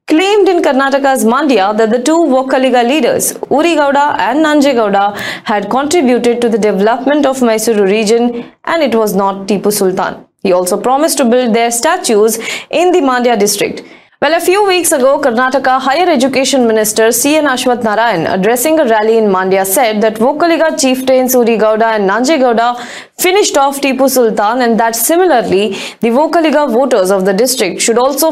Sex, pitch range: female, 225-300 Hz